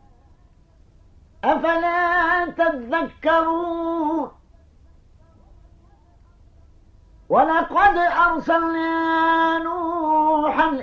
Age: 50-69